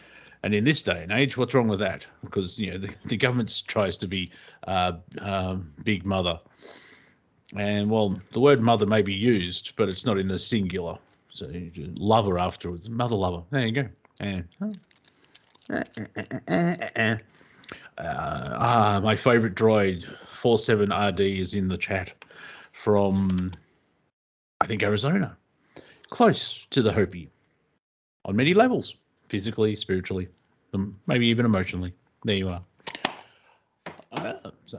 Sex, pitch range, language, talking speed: male, 95-120 Hz, English, 145 wpm